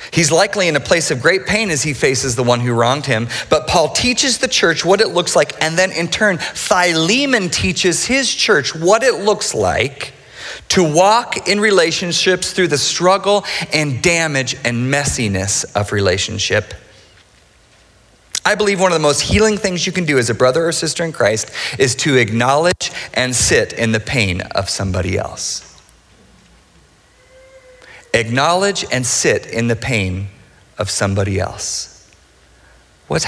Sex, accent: male, American